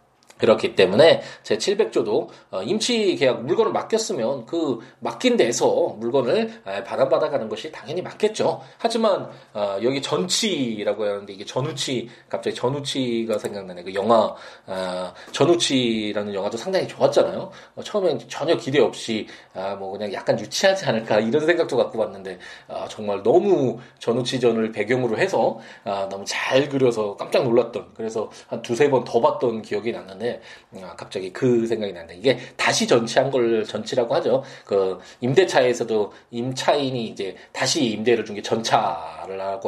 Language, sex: Korean, male